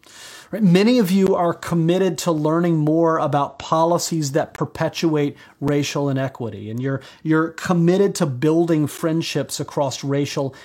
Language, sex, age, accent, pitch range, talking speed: English, male, 40-59, American, 140-170 Hz, 130 wpm